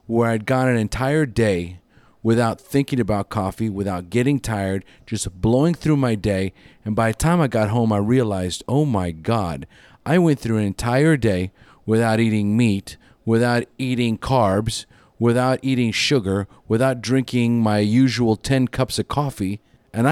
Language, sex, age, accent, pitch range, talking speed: English, male, 40-59, American, 100-130 Hz, 160 wpm